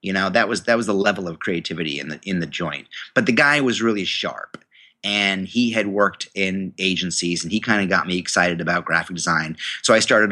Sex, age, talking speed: male, 30-49, 235 wpm